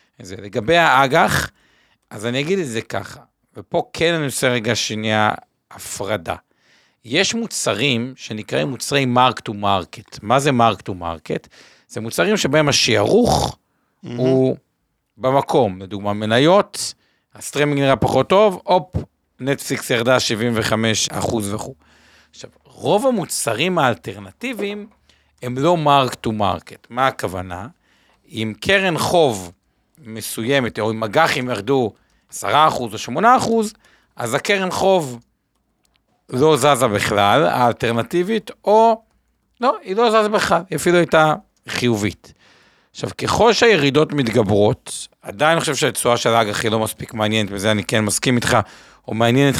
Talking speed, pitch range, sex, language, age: 125 wpm, 110-160 Hz, male, Hebrew, 50-69